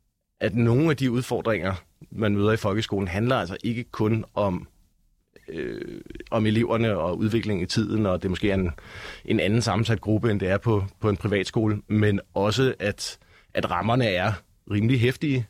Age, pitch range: 30-49, 100-120 Hz